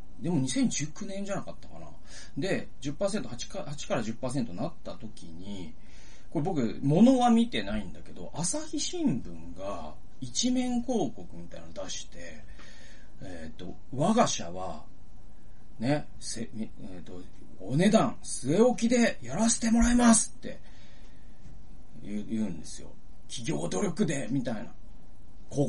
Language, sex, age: Japanese, male, 40-59